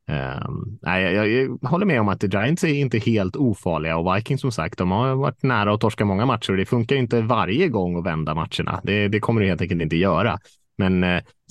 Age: 20-39